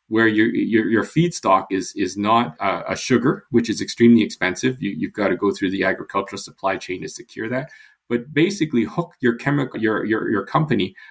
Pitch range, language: 95-120 Hz, English